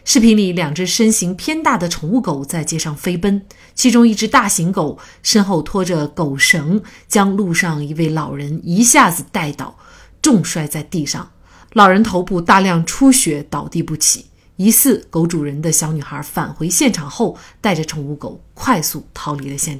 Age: 30-49